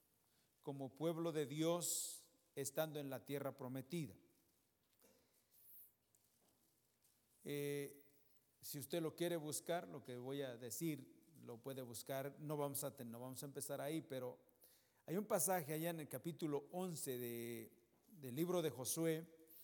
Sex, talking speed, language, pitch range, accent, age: male, 140 wpm, English, 130-170 Hz, Mexican, 50-69